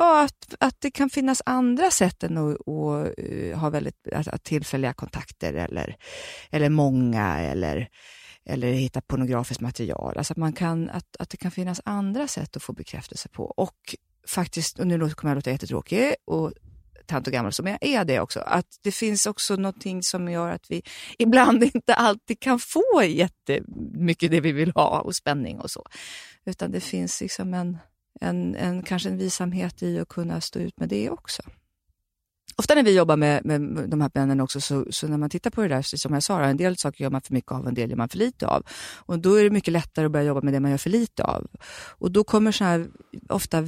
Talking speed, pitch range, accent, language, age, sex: 210 wpm, 140-200 Hz, Swedish, English, 30-49, female